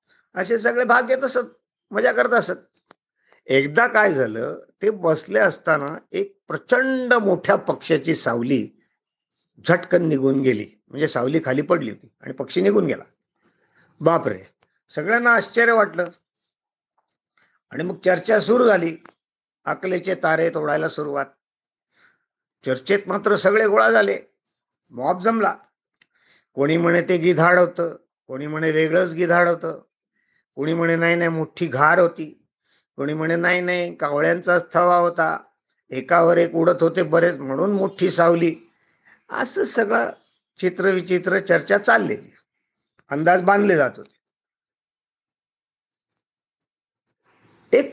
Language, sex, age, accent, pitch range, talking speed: Marathi, male, 50-69, native, 165-230 Hz, 120 wpm